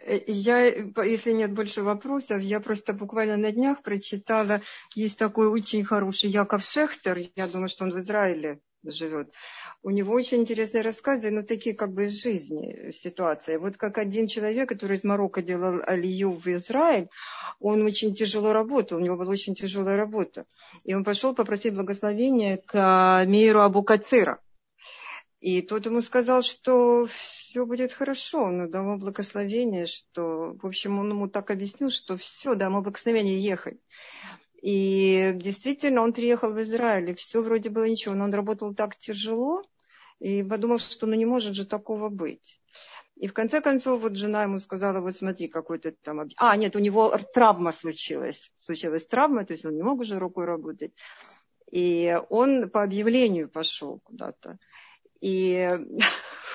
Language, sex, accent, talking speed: Russian, female, native, 160 wpm